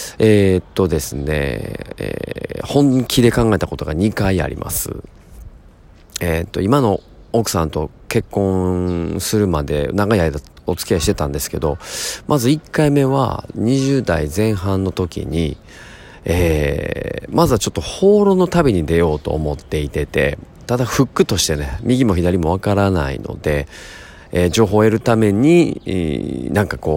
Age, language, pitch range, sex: 40-59, Japanese, 80-110 Hz, male